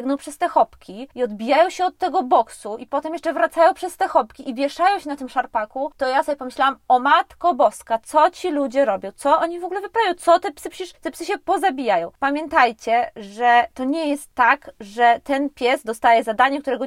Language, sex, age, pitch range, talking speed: Polish, female, 20-39, 235-300 Hz, 205 wpm